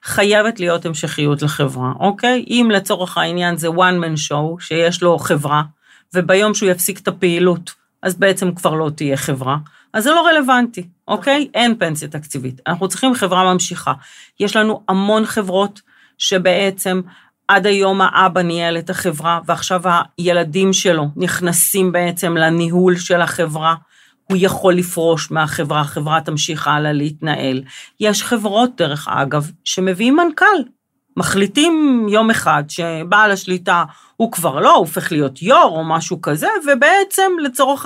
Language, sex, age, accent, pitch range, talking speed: Hebrew, female, 40-59, native, 165-215 Hz, 140 wpm